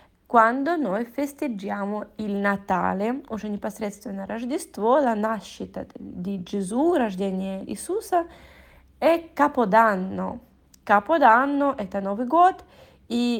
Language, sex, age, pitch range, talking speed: Italian, female, 20-39, 200-275 Hz, 120 wpm